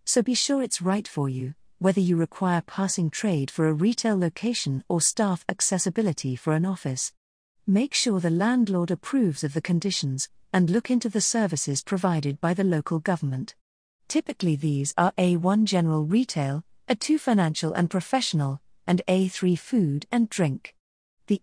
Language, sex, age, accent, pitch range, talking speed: English, female, 40-59, British, 160-215 Hz, 155 wpm